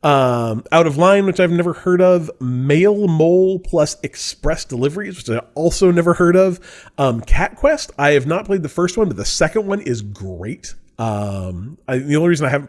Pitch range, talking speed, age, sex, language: 125-170 Hz, 205 wpm, 30-49, male, English